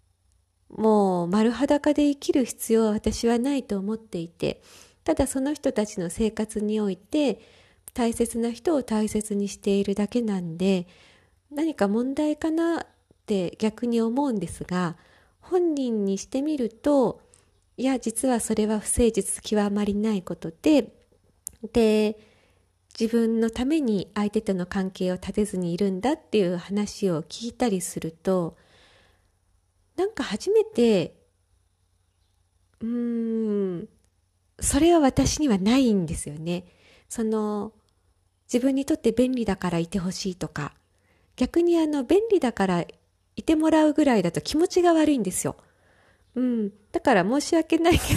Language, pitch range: Japanese, 180-265 Hz